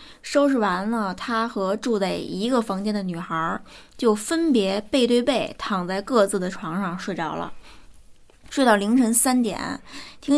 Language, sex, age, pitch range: Chinese, female, 20-39, 200-270 Hz